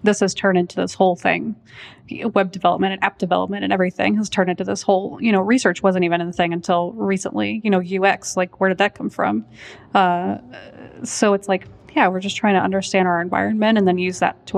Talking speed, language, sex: 225 wpm, English, female